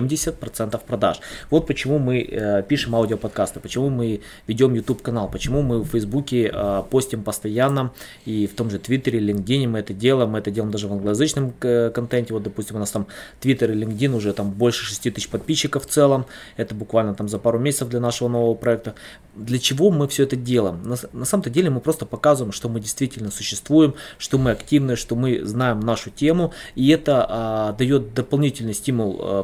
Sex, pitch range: male, 110-135 Hz